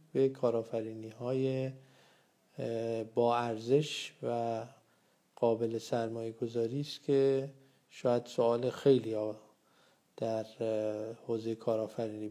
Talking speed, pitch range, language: 80 wpm, 115-130 Hz, Persian